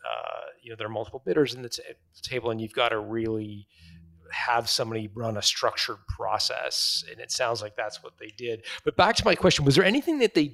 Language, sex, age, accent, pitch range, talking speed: English, male, 40-59, American, 120-160 Hz, 230 wpm